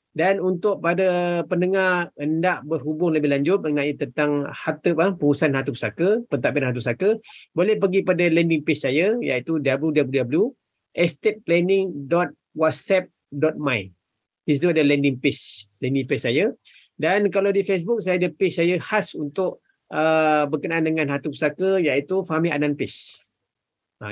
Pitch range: 145-180 Hz